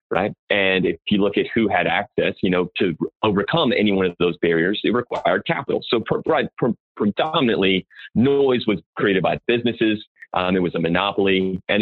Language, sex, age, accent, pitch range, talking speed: English, male, 30-49, American, 95-110 Hz, 175 wpm